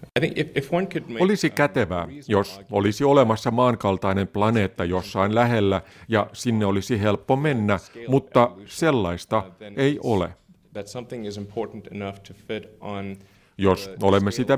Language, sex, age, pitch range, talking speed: Finnish, male, 50-69, 95-125 Hz, 85 wpm